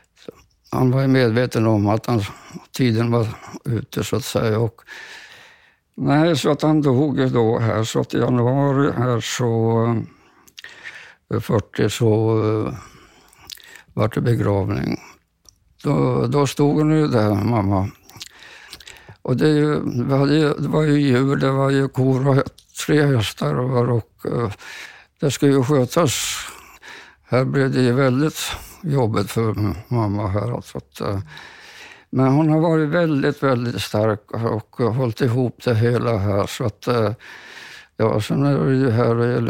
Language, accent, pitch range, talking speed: Swedish, Norwegian, 110-135 Hz, 135 wpm